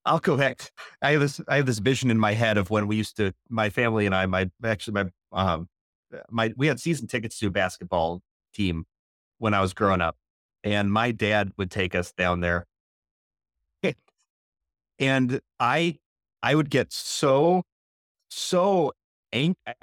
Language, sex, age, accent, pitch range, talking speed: English, male, 30-49, American, 110-170 Hz, 170 wpm